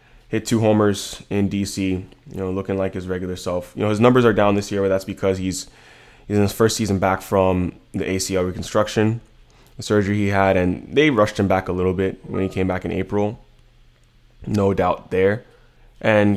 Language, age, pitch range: English, 20-39, 95-110 Hz